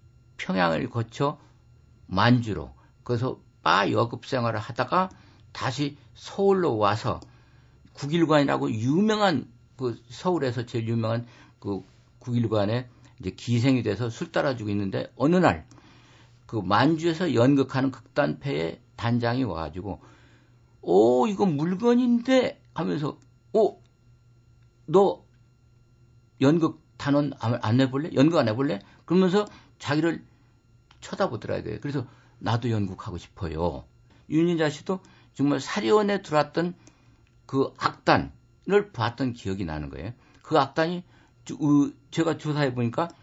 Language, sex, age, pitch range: Korean, male, 50-69, 115-150 Hz